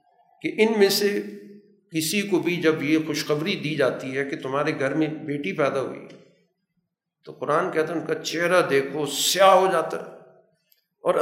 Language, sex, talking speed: Urdu, male, 175 wpm